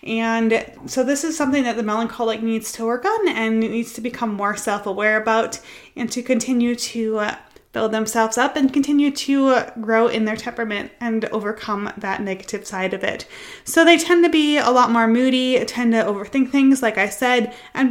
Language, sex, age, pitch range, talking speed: English, female, 20-39, 215-260 Hz, 190 wpm